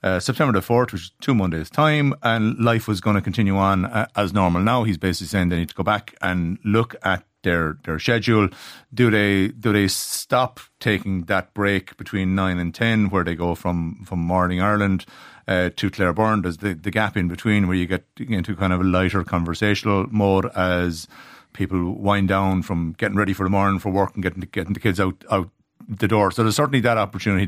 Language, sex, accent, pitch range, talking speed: English, male, Irish, 95-115 Hz, 215 wpm